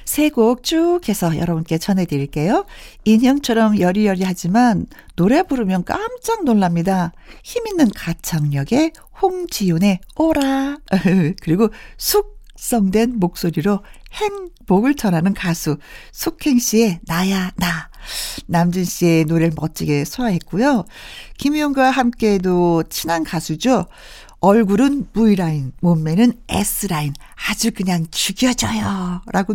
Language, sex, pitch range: Korean, female, 175-265 Hz